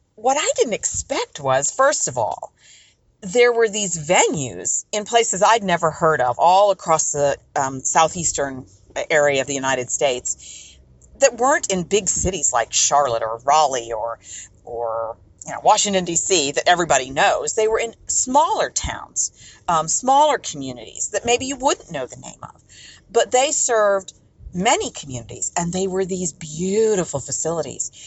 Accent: American